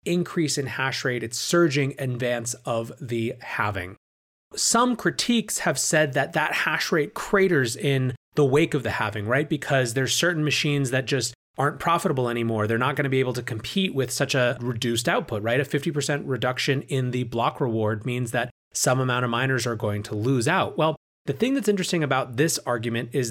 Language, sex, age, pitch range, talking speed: English, male, 30-49, 120-150 Hz, 200 wpm